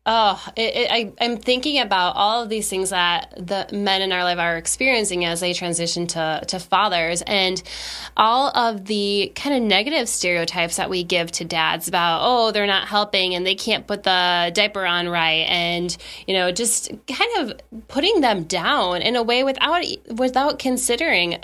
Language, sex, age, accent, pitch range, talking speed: English, female, 10-29, American, 180-235 Hz, 185 wpm